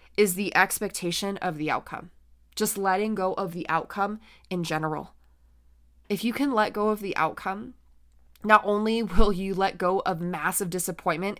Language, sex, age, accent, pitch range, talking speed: English, female, 20-39, American, 175-215 Hz, 165 wpm